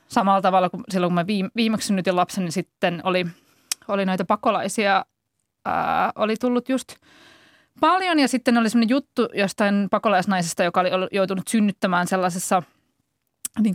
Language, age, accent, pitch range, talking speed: Finnish, 20-39, native, 190-235 Hz, 145 wpm